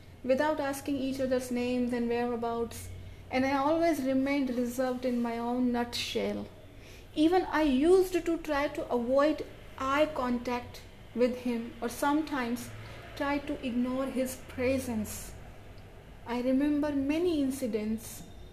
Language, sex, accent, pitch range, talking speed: Hindi, female, native, 235-285 Hz, 125 wpm